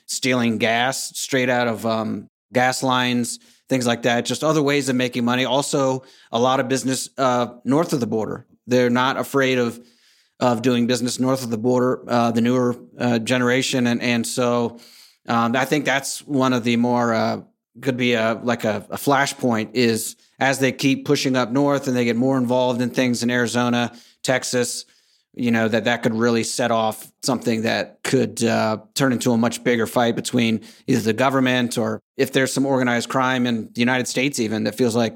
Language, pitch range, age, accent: English, 115-130 Hz, 30-49, American